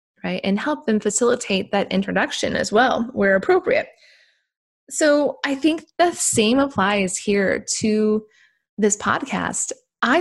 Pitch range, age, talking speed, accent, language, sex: 195-265 Hz, 20-39, 130 wpm, American, English, female